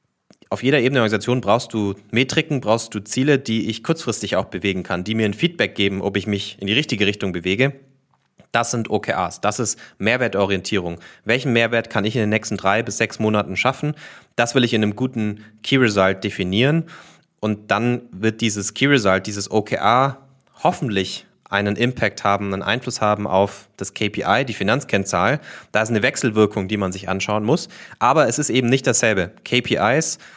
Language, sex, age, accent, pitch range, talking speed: German, male, 30-49, German, 100-120 Hz, 185 wpm